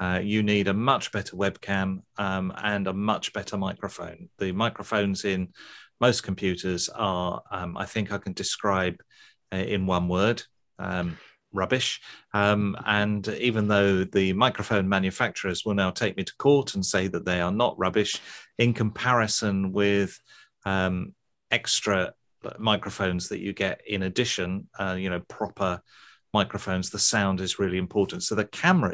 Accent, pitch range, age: British, 95-110 Hz, 40-59